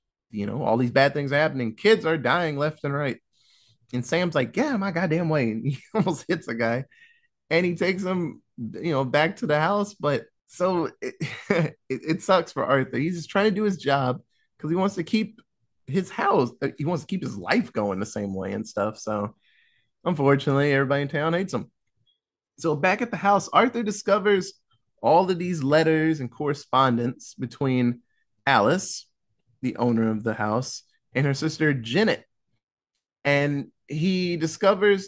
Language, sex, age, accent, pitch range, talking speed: English, male, 30-49, American, 125-185 Hz, 180 wpm